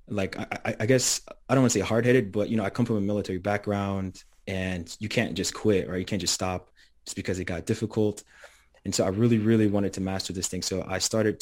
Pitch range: 95-110 Hz